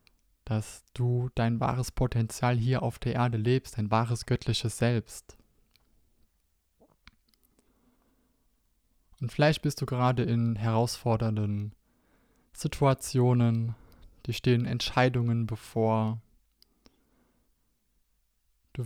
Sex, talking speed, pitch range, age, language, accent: male, 85 wpm, 110-130 Hz, 20-39, German, German